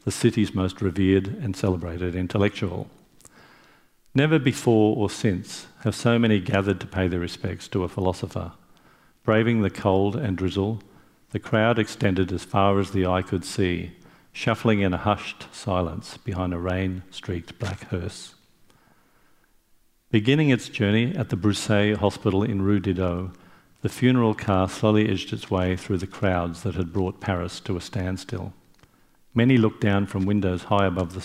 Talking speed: 155 wpm